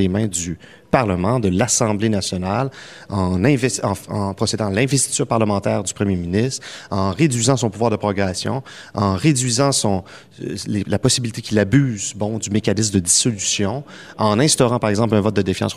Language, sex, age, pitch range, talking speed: French, male, 30-49, 100-135 Hz, 175 wpm